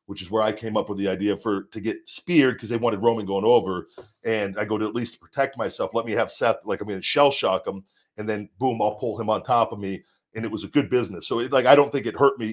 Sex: male